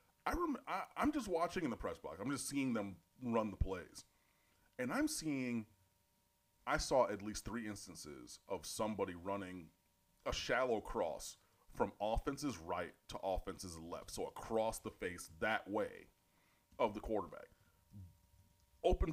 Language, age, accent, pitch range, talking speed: English, 30-49, American, 95-145 Hz, 155 wpm